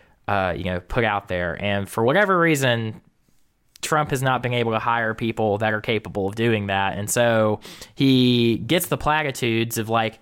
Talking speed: 190 wpm